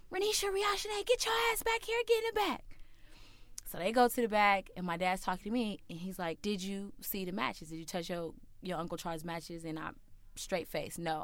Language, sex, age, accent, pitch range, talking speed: English, female, 20-39, American, 165-195 Hz, 235 wpm